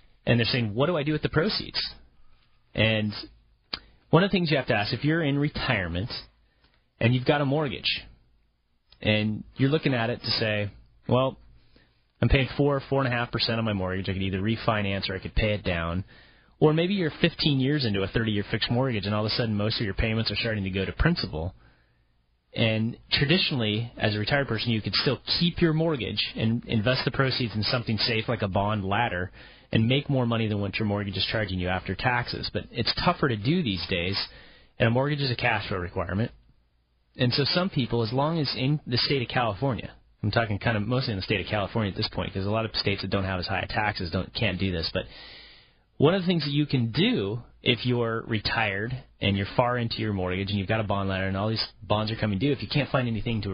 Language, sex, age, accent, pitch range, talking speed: English, male, 30-49, American, 100-130 Hz, 235 wpm